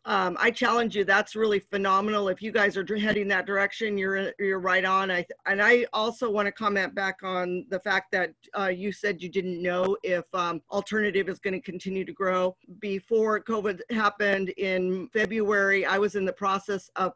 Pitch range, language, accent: 185-205 Hz, English, American